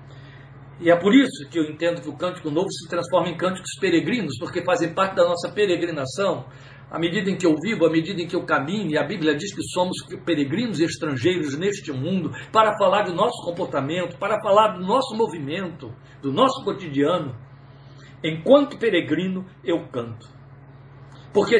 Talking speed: 175 wpm